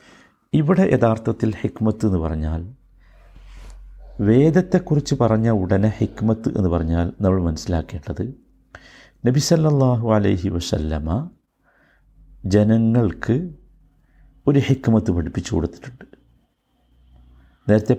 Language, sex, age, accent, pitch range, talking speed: Malayalam, male, 50-69, native, 90-130 Hz, 75 wpm